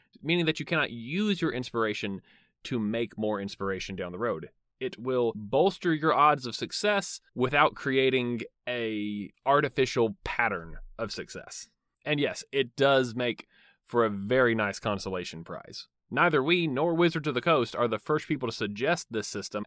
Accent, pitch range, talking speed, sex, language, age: American, 115-155 Hz, 165 wpm, male, English, 30-49